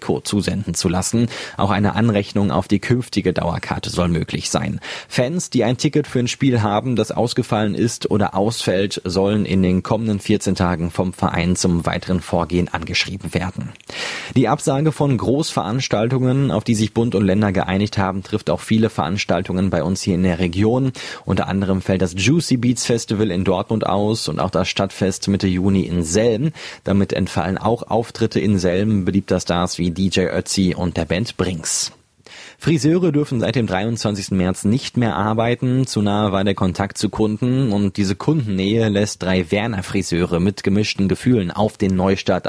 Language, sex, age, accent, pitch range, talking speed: German, male, 30-49, German, 95-115 Hz, 175 wpm